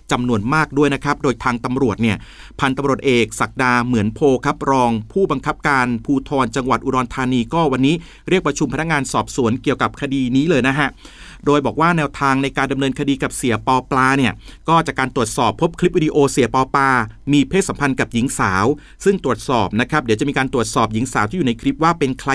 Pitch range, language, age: 125-165 Hz, Thai, 30-49